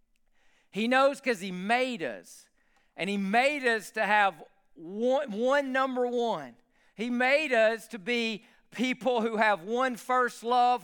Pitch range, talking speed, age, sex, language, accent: 225-260 Hz, 150 wpm, 50-69, male, English, American